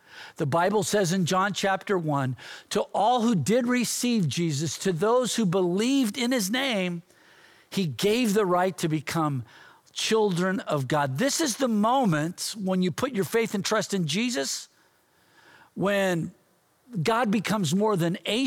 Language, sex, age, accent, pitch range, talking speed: English, male, 50-69, American, 165-225 Hz, 155 wpm